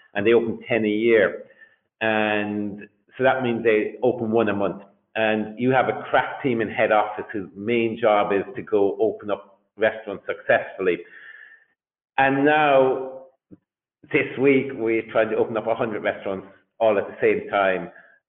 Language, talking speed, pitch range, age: English, 165 wpm, 110-145 Hz, 50-69